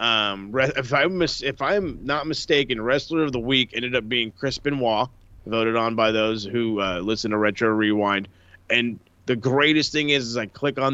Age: 30-49